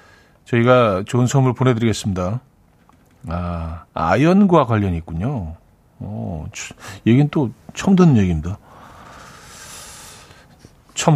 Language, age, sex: Korean, 40-59, male